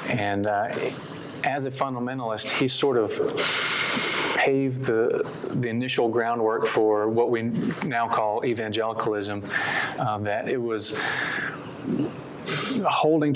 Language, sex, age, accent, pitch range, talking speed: English, male, 30-49, American, 110-130 Hz, 110 wpm